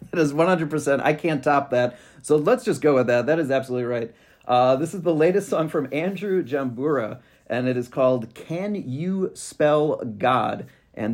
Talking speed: 190 wpm